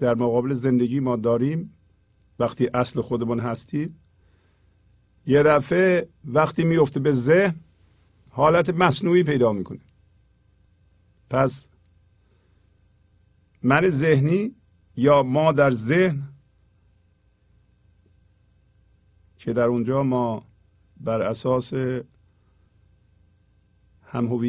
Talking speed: 80 wpm